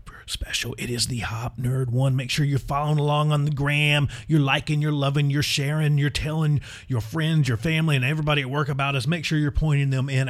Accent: American